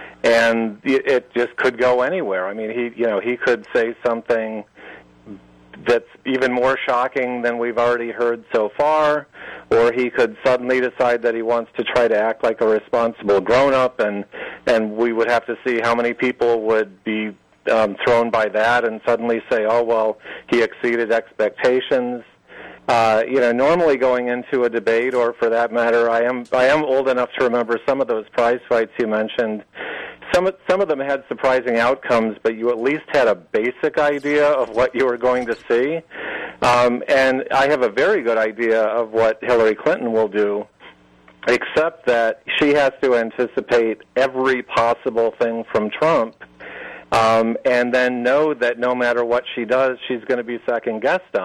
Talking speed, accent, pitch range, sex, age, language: 180 wpm, American, 115-125 Hz, male, 50-69, English